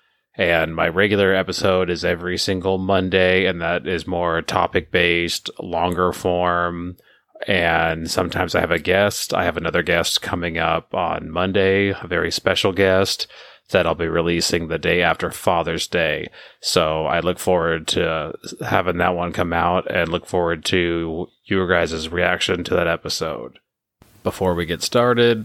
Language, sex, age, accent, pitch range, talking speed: English, male, 30-49, American, 85-90 Hz, 155 wpm